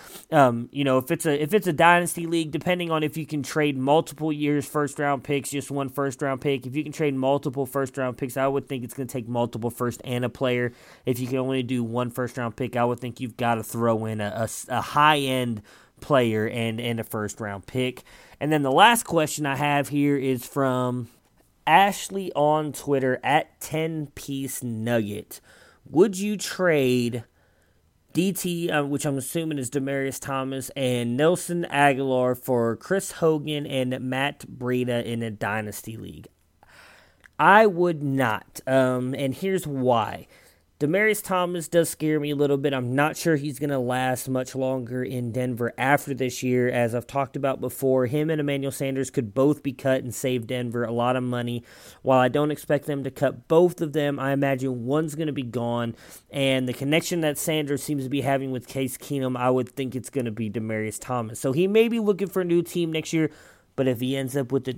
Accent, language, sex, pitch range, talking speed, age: American, English, male, 125-150 Hz, 205 wpm, 20-39